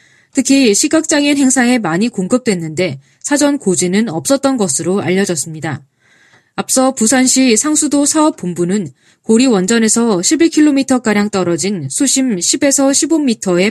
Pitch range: 185-270 Hz